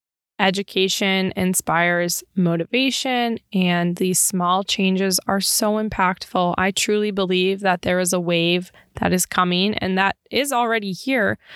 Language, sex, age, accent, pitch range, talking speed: English, female, 20-39, American, 180-215 Hz, 135 wpm